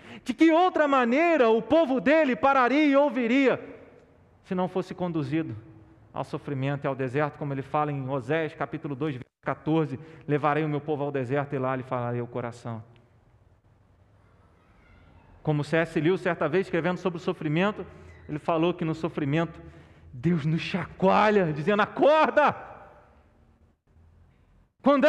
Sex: male